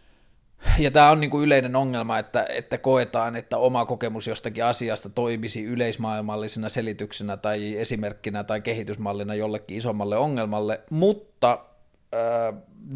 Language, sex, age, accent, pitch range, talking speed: Finnish, male, 30-49, native, 115-140 Hz, 120 wpm